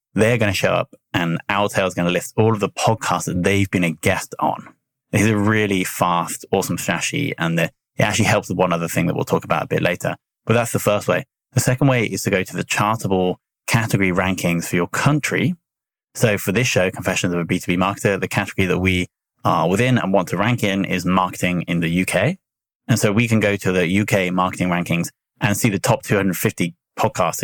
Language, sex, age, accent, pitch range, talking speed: English, male, 20-39, British, 90-110 Hz, 225 wpm